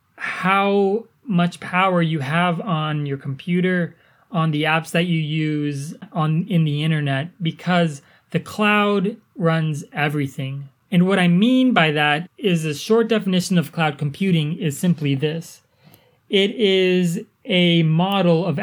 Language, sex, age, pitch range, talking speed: English, male, 20-39, 150-190 Hz, 140 wpm